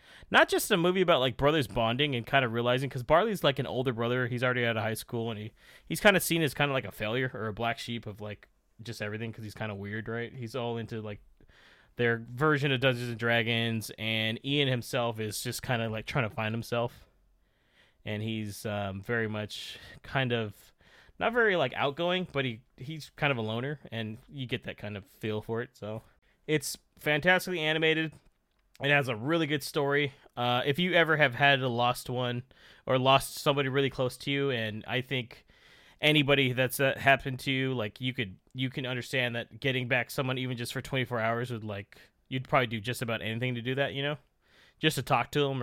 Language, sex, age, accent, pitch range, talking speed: English, male, 20-39, American, 115-140 Hz, 220 wpm